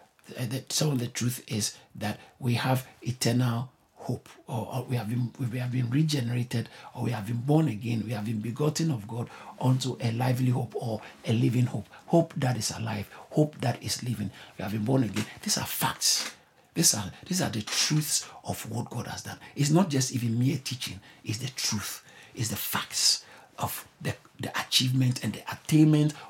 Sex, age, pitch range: male, 60-79, 120-200 Hz